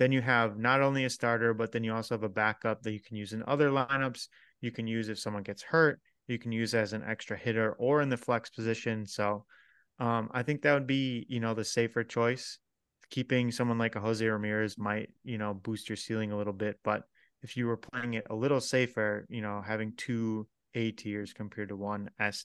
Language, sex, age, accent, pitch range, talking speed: English, male, 20-39, American, 110-125 Hz, 230 wpm